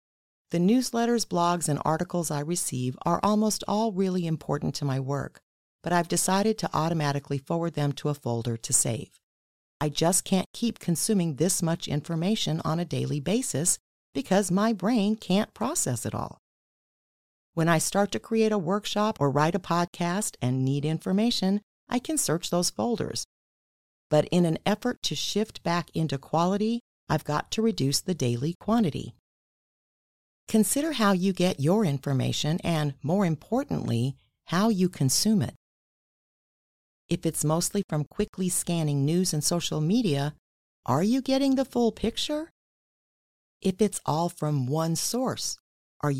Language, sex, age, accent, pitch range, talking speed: English, female, 40-59, American, 150-210 Hz, 150 wpm